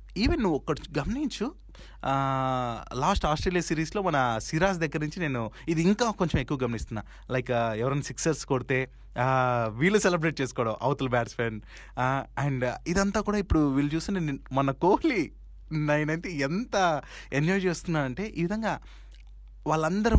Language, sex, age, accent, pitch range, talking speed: Telugu, male, 20-39, native, 115-160 Hz, 125 wpm